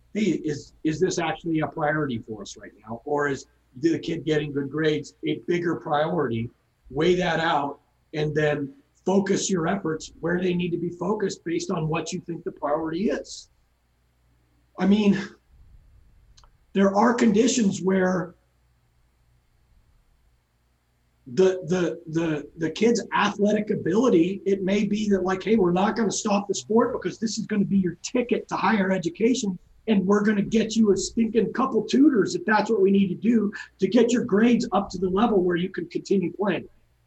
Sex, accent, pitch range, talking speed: male, American, 160-205 Hz, 180 wpm